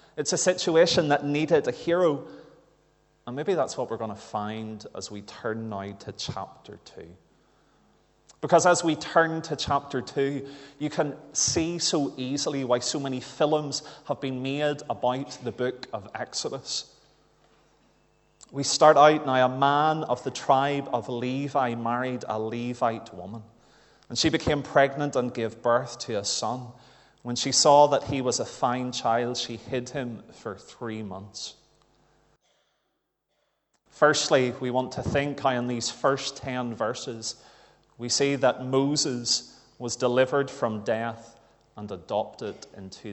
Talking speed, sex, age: 150 wpm, male, 30-49